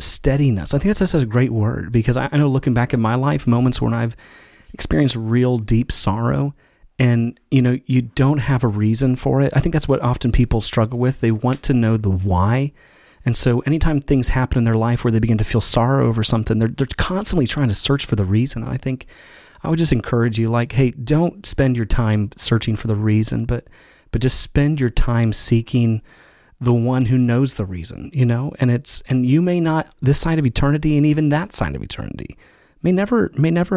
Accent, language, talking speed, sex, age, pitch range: American, English, 220 wpm, male, 30-49, 115-135 Hz